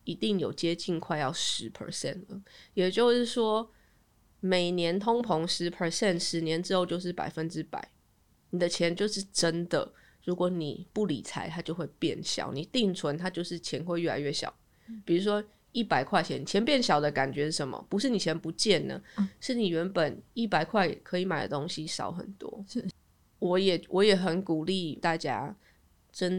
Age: 20-39